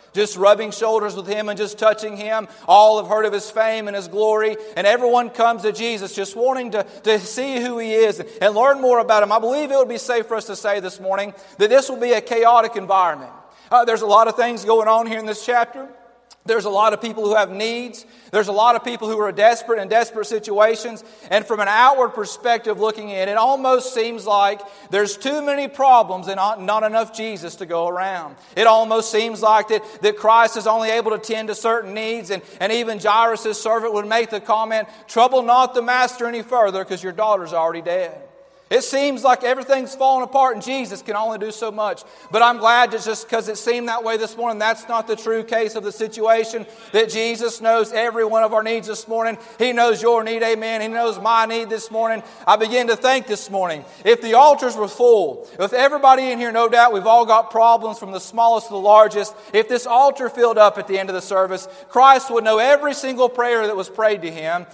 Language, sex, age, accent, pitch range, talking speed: English, male, 40-59, American, 210-235 Hz, 230 wpm